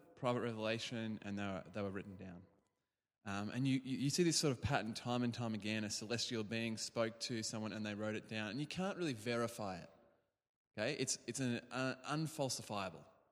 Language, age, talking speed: English, 20-39, 205 wpm